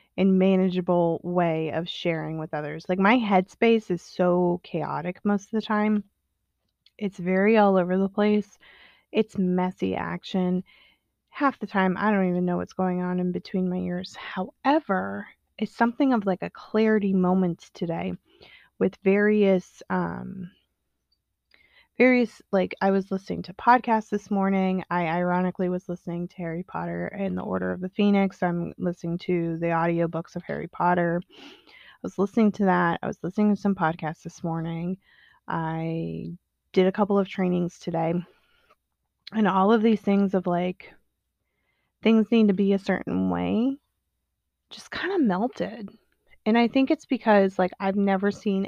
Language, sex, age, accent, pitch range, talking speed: English, female, 20-39, American, 175-210 Hz, 160 wpm